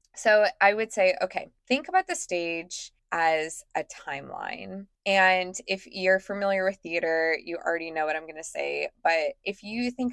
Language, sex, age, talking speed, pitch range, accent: English, female, 20-39, 180 wpm, 170-210 Hz, American